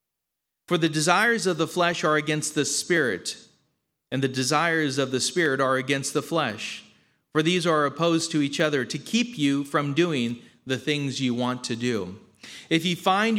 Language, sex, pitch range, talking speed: English, male, 135-180 Hz, 185 wpm